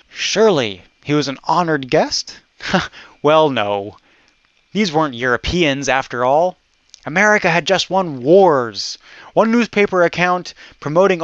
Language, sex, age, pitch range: English, male, 30-49, 135-180 Hz